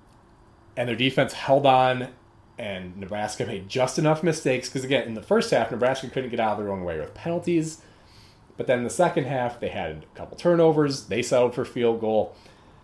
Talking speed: 195 wpm